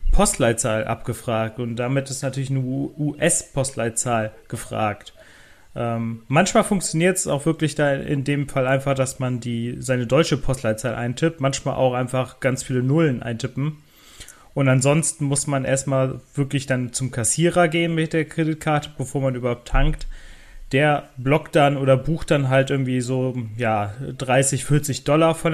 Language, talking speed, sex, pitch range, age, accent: German, 145 wpm, male, 125-150 Hz, 30-49, German